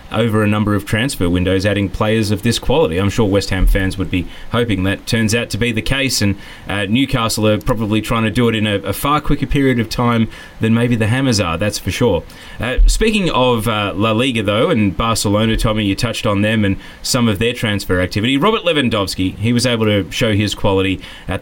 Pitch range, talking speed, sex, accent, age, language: 105-130 Hz, 225 wpm, male, Australian, 20-39, English